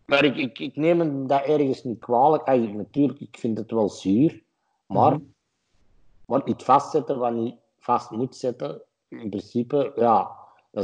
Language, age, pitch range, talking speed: Dutch, 50-69, 105-120 Hz, 160 wpm